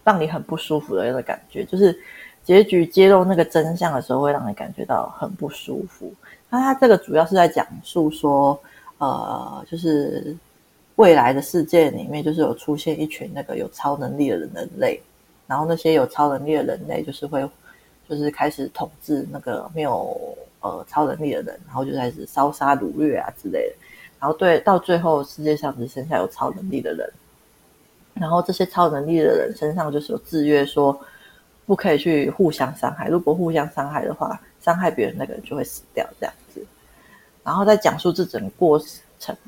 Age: 30-49